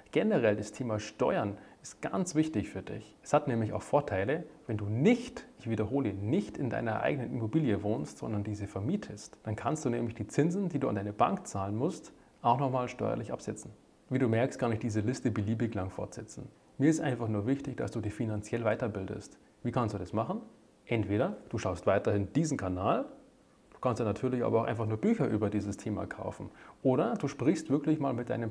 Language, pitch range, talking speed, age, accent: German, 105-145 Hz, 205 wpm, 30-49, German